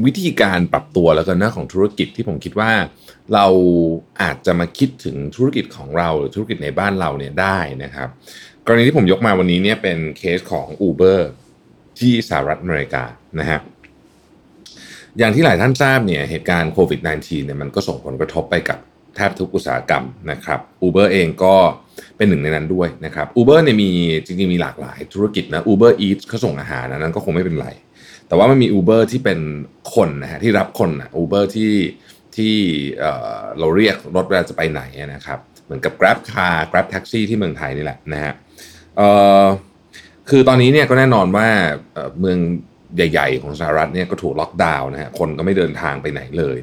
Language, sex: Thai, male